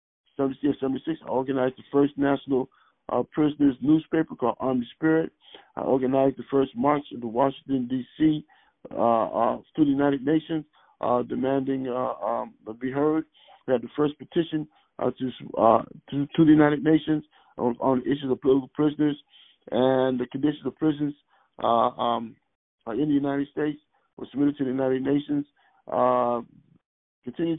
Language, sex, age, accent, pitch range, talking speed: English, male, 50-69, American, 130-145 Hz, 160 wpm